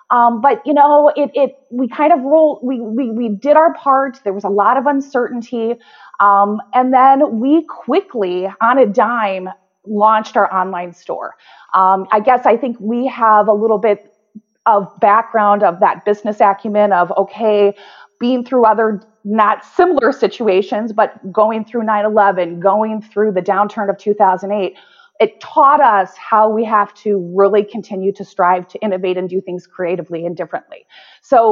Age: 30-49